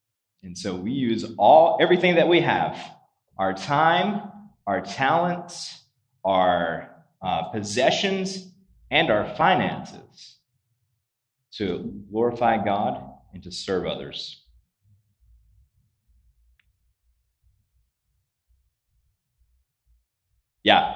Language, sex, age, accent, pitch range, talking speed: English, male, 30-49, American, 95-135 Hz, 75 wpm